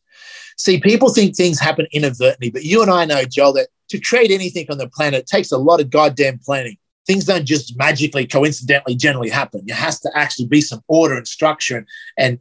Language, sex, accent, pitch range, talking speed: English, male, Australian, 135-170 Hz, 205 wpm